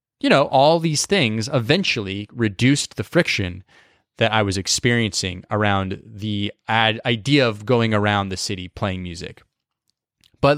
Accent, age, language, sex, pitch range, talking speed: American, 20-39, English, male, 100-125 Hz, 135 wpm